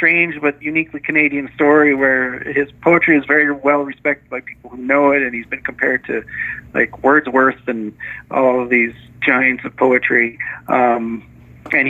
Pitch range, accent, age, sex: 125-145 Hz, American, 40-59, male